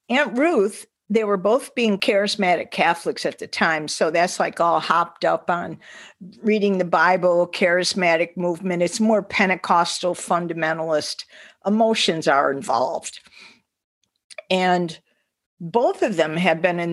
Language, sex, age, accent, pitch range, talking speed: English, female, 50-69, American, 180-225 Hz, 130 wpm